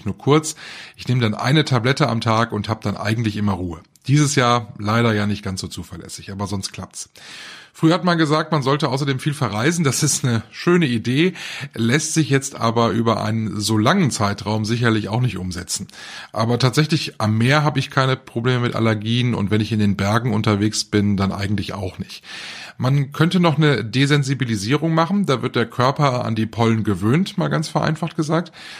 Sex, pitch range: male, 110-150 Hz